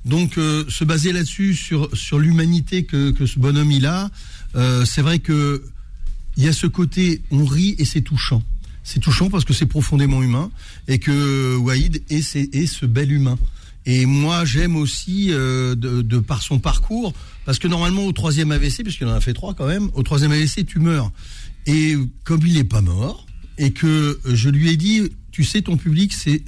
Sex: male